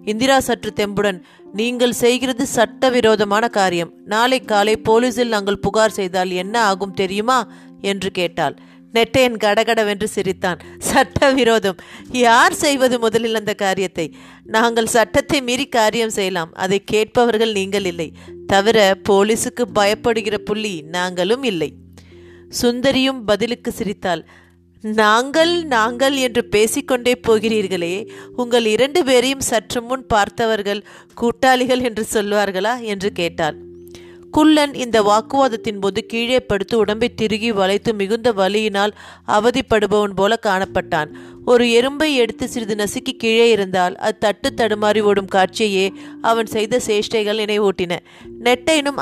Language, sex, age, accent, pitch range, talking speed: Tamil, female, 30-49, native, 195-240 Hz, 115 wpm